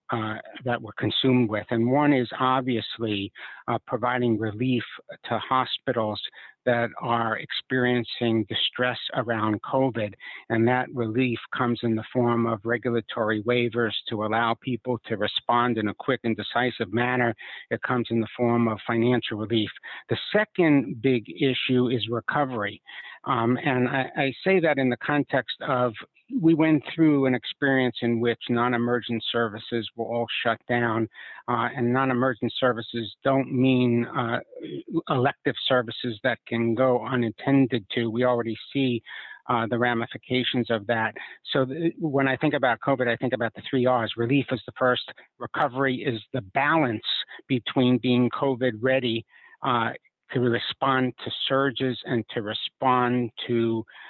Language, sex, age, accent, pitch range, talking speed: English, male, 60-79, American, 115-130 Hz, 150 wpm